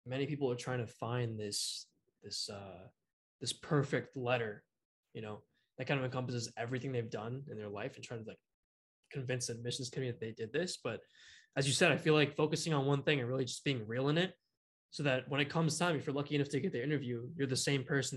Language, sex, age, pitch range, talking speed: English, male, 20-39, 110-140 Hz, 240 wpm